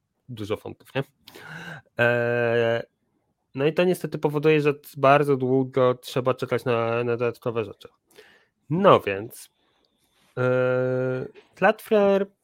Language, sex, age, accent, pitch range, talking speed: Polish, male, 30-49, native, 125-160 Hz, 95 wpm